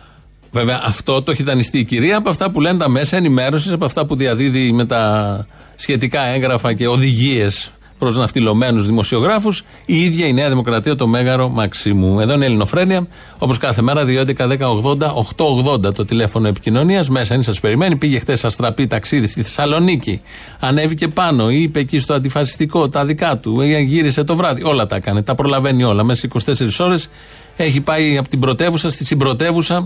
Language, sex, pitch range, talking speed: Greek, male, 115-155 Hz, 175 wpm